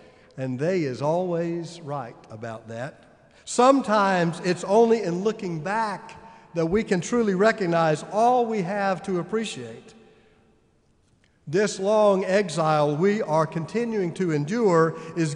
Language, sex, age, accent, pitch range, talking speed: English, male, 50-69, American, 145-200 Hz, 125 wpm